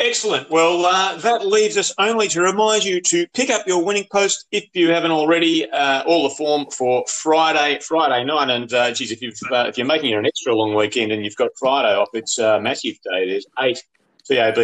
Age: 40-59